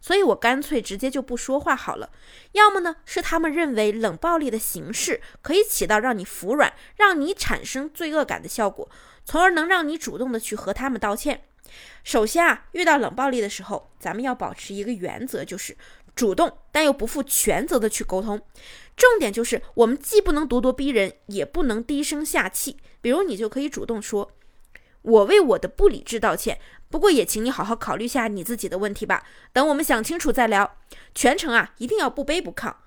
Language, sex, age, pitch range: Chinese, female, 20-39, 225-315 Hz